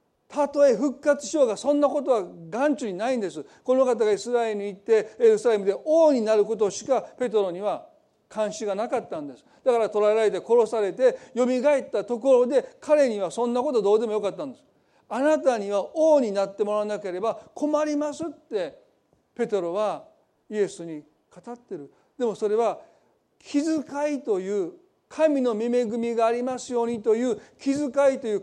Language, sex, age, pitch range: Japanese, male, 40-59, 210-280 Hz